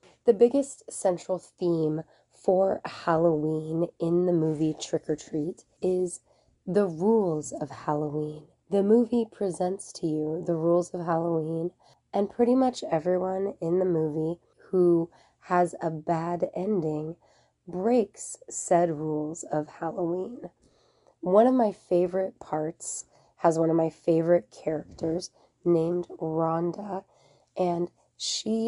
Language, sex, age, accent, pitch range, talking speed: English, female, 20-39, American, 165-190 Hz, 120 wpm